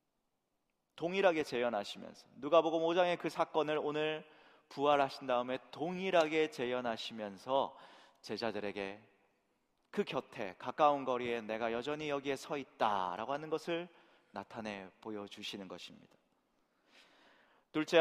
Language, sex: Korean, male